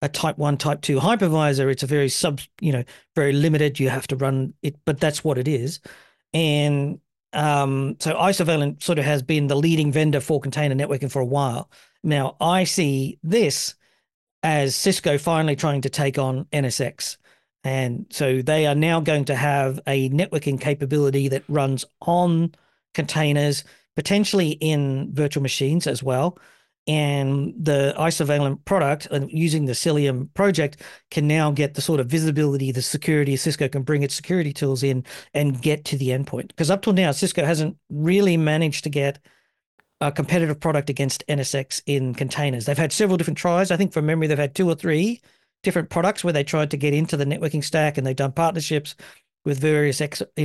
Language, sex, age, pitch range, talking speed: English, male, 40-59, 140-165 Hz, 185 wpm